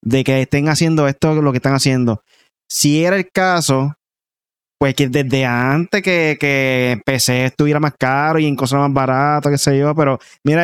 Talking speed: 185 wpm